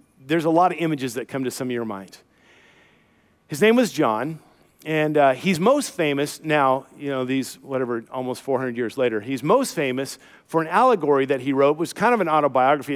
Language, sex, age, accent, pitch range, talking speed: English, male, 50-69, American, 135-195 Hz, 210 wpm